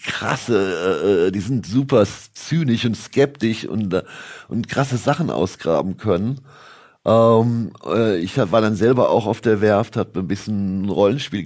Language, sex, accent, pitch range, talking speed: German, male, German, 105-130 Hz, 140 wpm